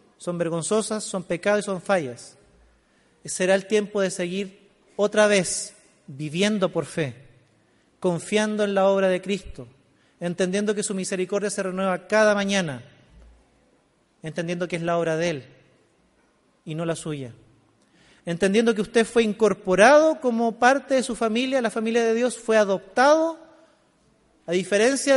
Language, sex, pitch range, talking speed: Spanish, male, 165-225 Hz, 145 wpm